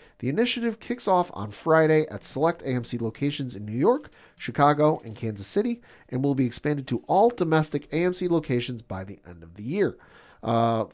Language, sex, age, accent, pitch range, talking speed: English, male, 40-59, American, 120-175 Hz, 180 wpm